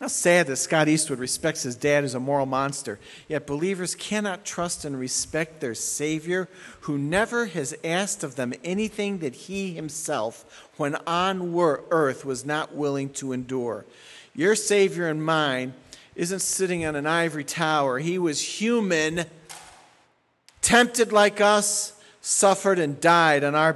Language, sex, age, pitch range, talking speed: English, male, 50-69, 140-180 Hz, 150 wpm